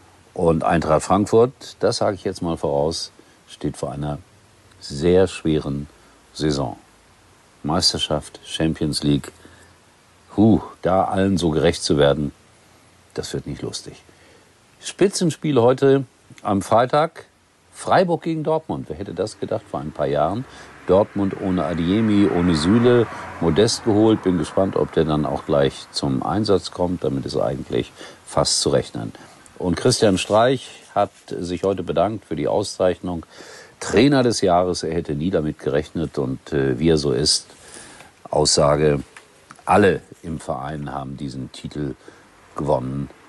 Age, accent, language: 50-69, German, German